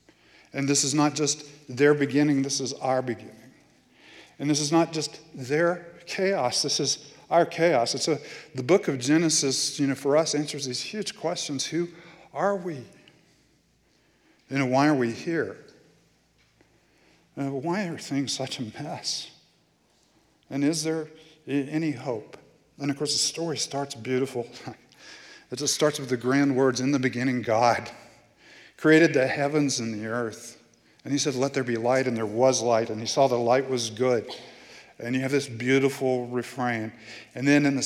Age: 50-69